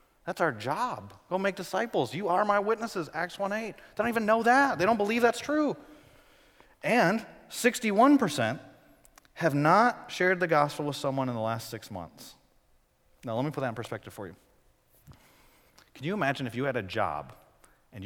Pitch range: 130-200 Hz